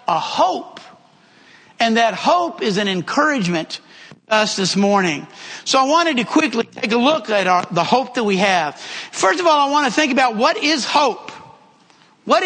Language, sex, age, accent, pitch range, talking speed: English, male, 50-69, American, 235-315 Hz, 190 wpm